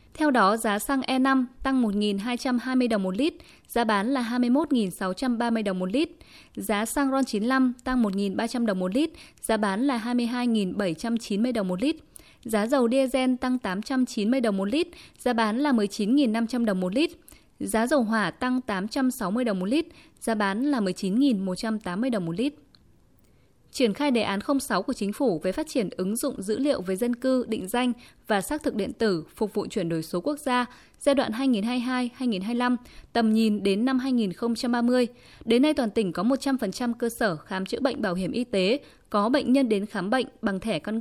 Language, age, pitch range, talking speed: Vietnamese, 20-39, 210-260 Hz, 185 wpm